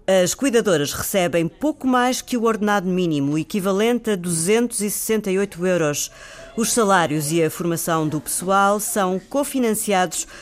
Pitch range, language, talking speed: 170-230 Hz, Portuguese, 125 wpm